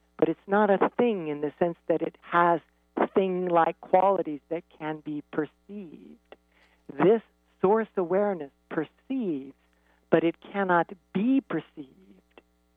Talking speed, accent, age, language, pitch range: 120 wpm, American, 60-79, English, 150-190 Hz